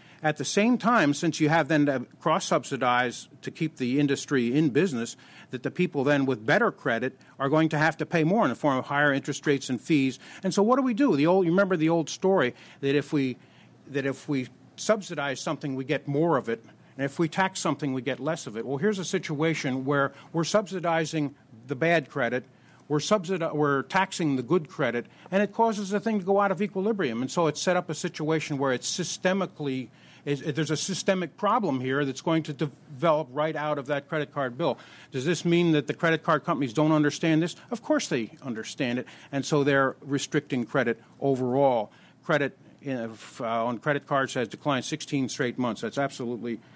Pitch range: 130-170 Hz